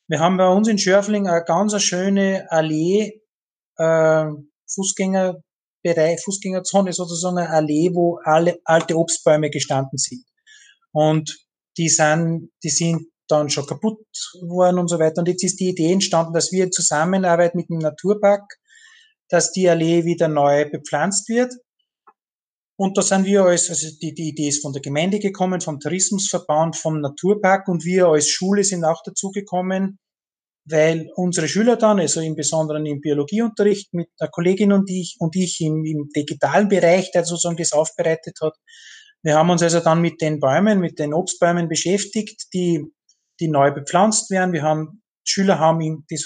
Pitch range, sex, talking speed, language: 155-190 Hz, male, 165 wpm, German